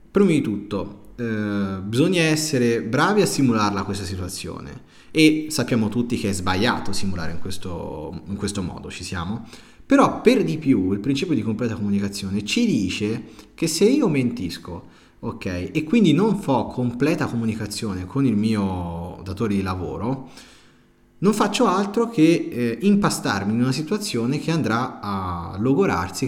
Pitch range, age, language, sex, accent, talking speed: 100-145 Hz, 30-49, Italian, male, native, 150 wpm